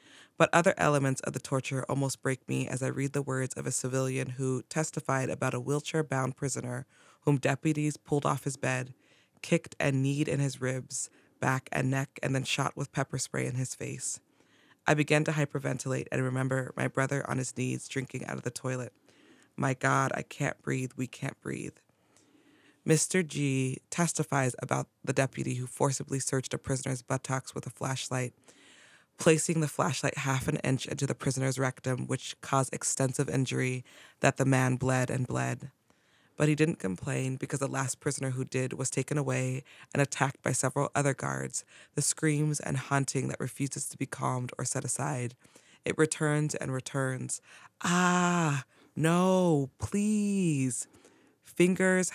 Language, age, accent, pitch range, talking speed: English, 20-39, American, 130-145 Hz, 165 wpm